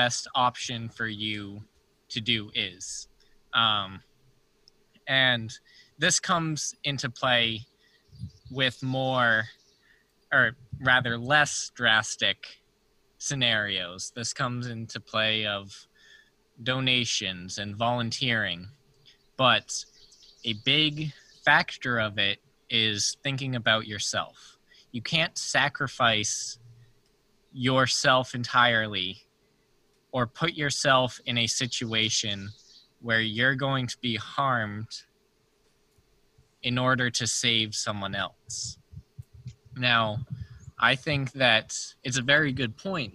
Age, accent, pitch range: 20-39, American, 110-135 Hz